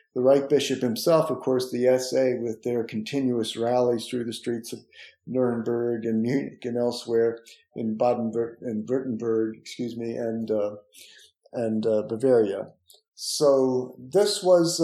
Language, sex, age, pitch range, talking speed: English, male, 50-69, 120-155 Hz, 145 wpm